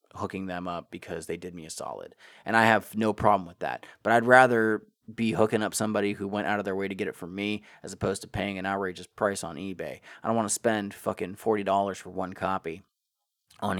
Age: 30-49